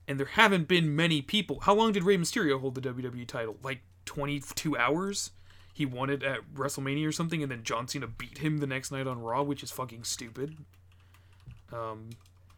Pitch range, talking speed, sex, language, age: 95-140 Hz, 195 wpm, male, English, 30-49